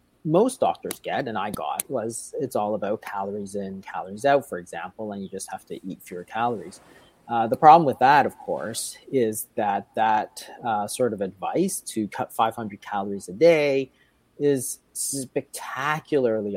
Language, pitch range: English, 105-140 Hz